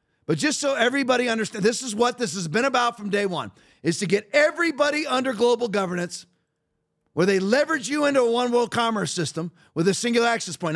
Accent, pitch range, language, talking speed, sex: American, 170-240 Hz, English, 200 wpm, male